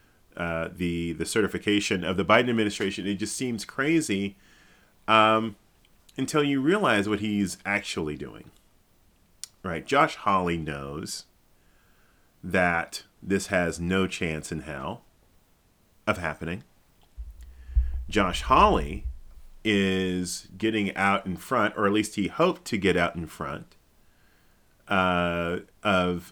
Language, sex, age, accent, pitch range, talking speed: English, male, 40-59, American, 80-100 Hz, 115 wpm